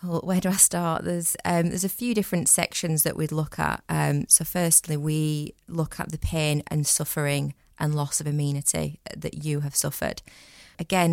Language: English